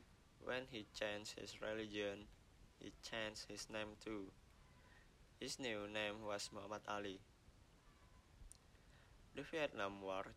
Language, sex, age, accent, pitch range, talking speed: English, male, 20-39, Indonesian, 105-110 Hz, 110 wpm